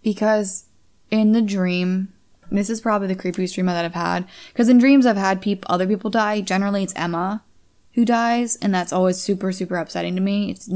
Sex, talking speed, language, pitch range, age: female, 200 wpm, English, 170-195 Hz, 20-39